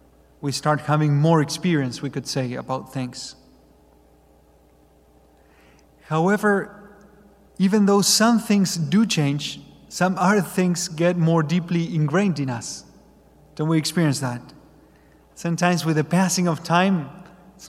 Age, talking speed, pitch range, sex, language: 30-49, 125 wpm, 135-170 Hz, male, English